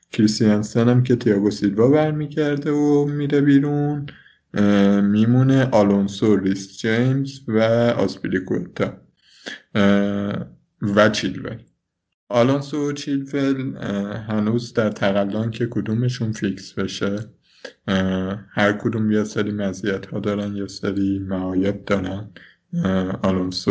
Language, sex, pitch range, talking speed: Persian, male, 95-110 Hz, 100 wpm